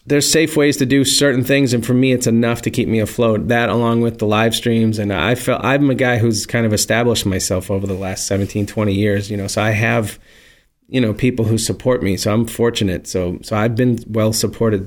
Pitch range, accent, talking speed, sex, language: 105-125 Hz, American, 240 wpm, male, English